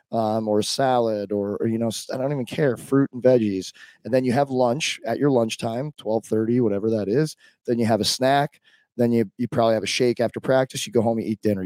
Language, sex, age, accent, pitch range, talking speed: English, male, 20-39, American, 105-120 Hz, 240 wpm